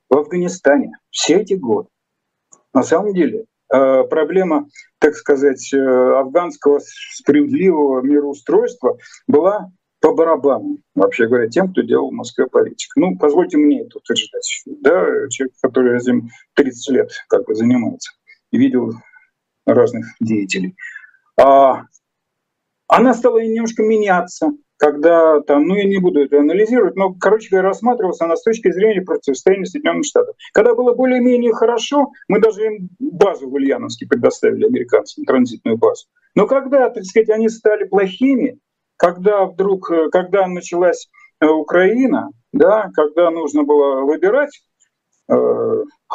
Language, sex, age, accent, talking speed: Russian, male, 50-69, native, 120 wpm